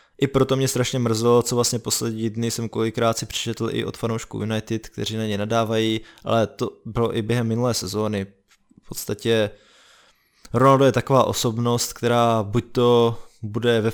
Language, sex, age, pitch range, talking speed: Slovak, male, 20-39, 105-115 Hz, 170 wpm